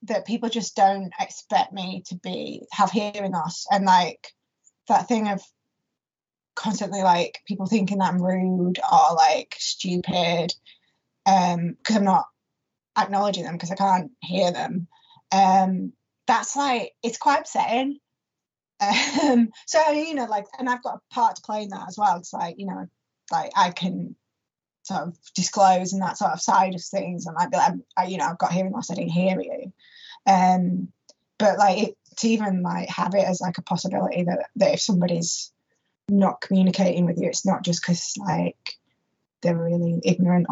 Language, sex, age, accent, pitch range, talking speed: English, female, 20-39, British, 180-215 Hz, 170 wpm